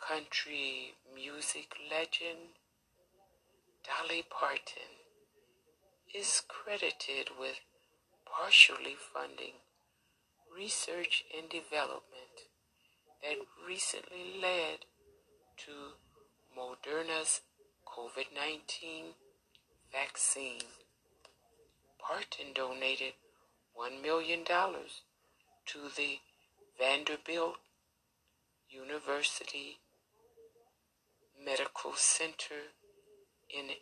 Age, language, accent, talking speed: 60-79, English, American, 55 wpm